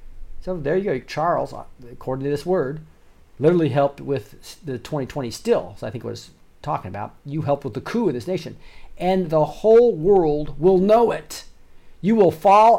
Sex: male